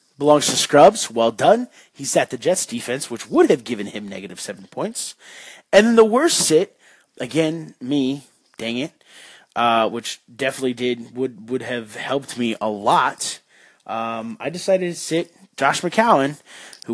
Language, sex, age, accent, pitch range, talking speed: English, male, 20-39, American, 125-185 Hz, 165 wpm